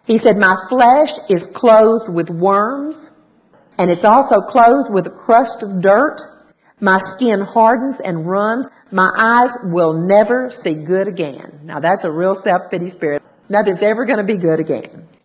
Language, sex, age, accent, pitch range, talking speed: English, female, 50-69, American, 185-240 Hz, 165 wpm